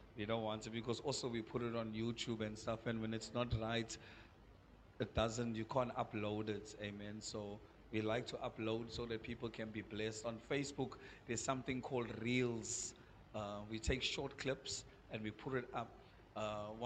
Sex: male